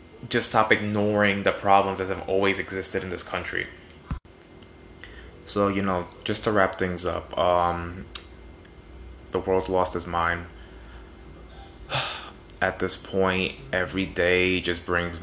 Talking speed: 130 wpm